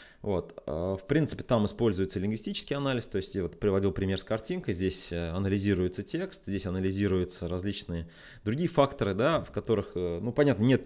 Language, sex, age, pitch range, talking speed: Russian, male, 20-39, 90-120 Hz, 160 wpm